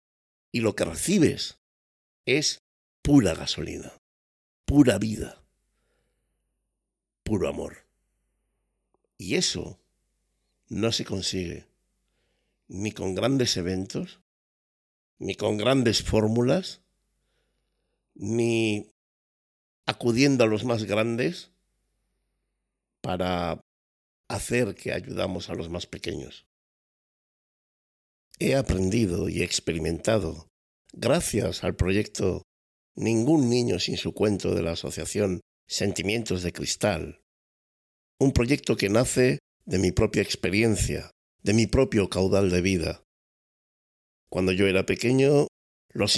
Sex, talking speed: male, 95 wpm